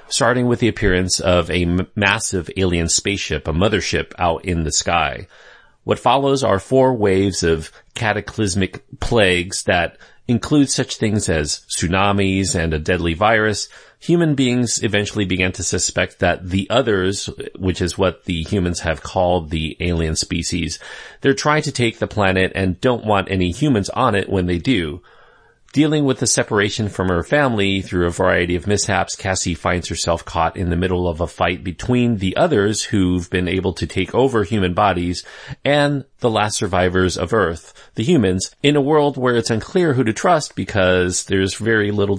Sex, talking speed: male, 175 wpm